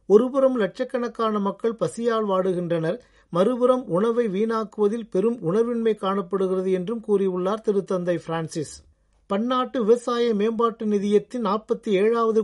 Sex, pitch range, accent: male, 180-215 Hz, native